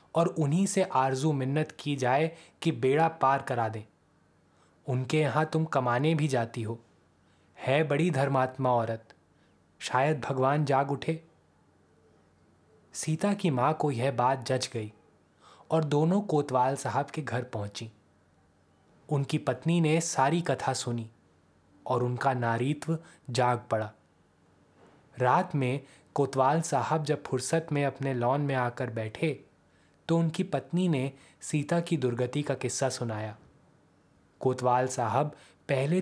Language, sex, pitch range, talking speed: Hindi, male, 120-155 Hz, 130 wpm